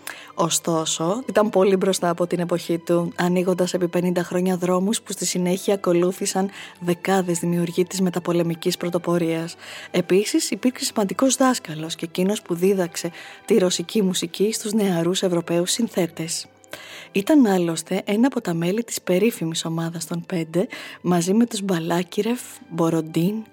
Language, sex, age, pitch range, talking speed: Greek, female, 20-39, 170-215 Hz, 135 wpm